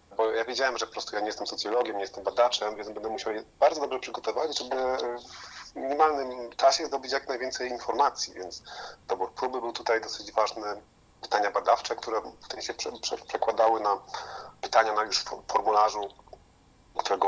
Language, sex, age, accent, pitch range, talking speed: Polish, male, 30-49, native, 100-125 Hz, 165 wpm